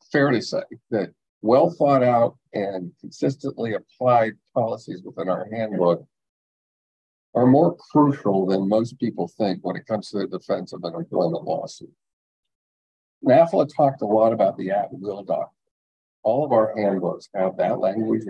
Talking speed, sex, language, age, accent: 150 wpm, male, English, 50-69, American